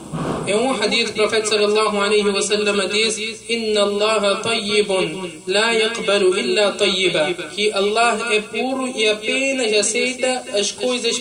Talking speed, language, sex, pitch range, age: 125 wpm, Portuguese, male, 205-235 Hz, 20-39